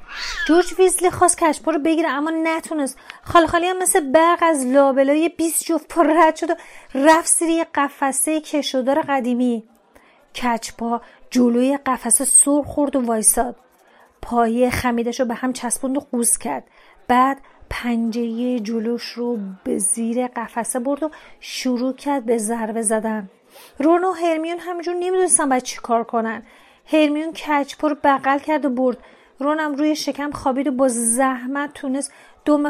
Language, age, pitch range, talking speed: Persian, 30-49, 240-310 Hz, 145 wpm